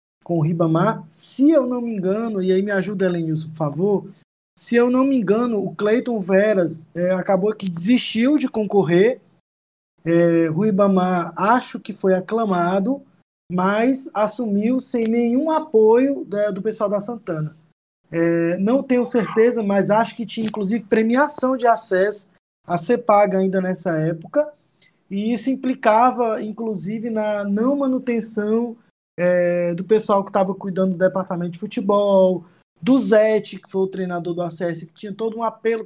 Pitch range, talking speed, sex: 185-230 Hz, 155 wpm, male